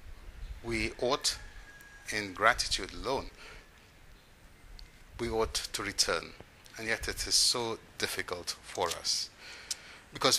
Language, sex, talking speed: English, male, 105 wpm